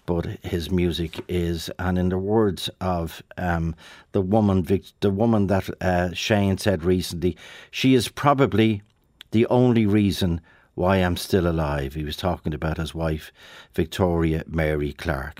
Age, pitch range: 50-69, 85-110 Hz